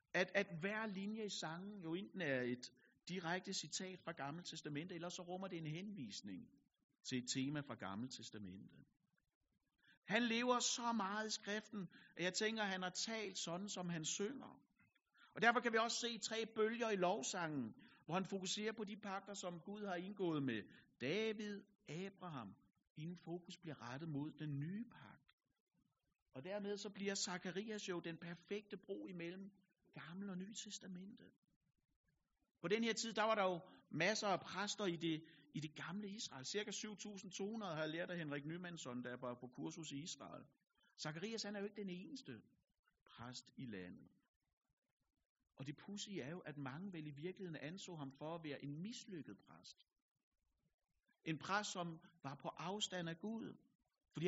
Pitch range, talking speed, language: 155-205 Hz, 170 wpm, Danish